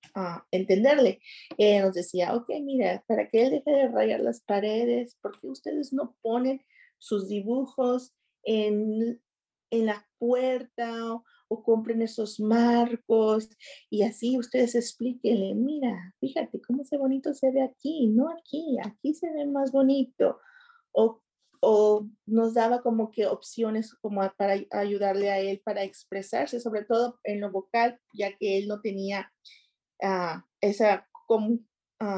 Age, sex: 40-59, female